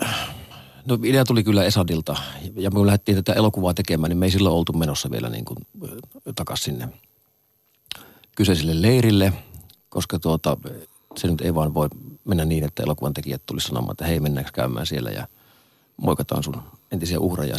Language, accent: Finnish, native